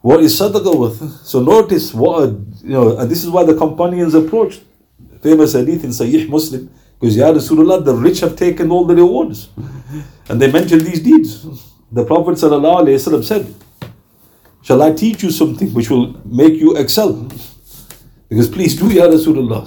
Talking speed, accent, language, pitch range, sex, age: 170 wpm, Indian, English, 115-160 Hz, male, 50-69